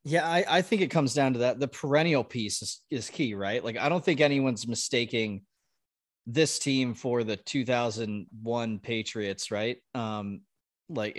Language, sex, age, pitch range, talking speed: English, male, 20-39, 115-145 Hz, 165 wpm